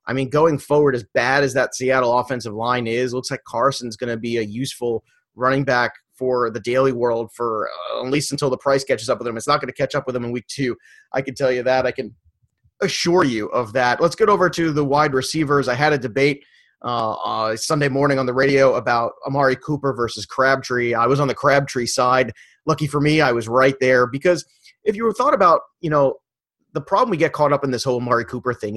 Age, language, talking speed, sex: 30-49, English, 240 wpm, male